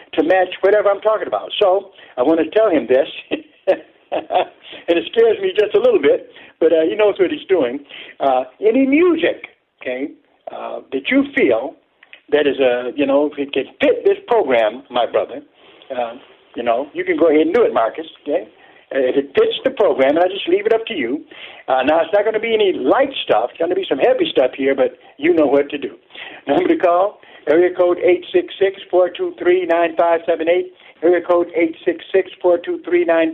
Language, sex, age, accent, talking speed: English, male, 60-79, American, 220 wpm